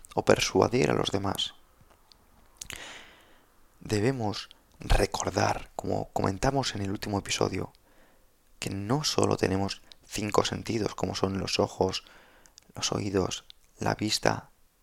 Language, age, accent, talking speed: Spanish, 20-39, Spanish, 110 wpm